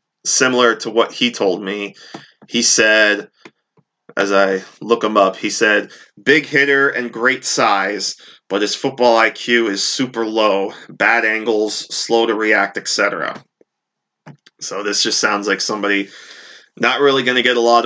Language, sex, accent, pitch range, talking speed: English, male, American, 100-120 Hz, 155 wpm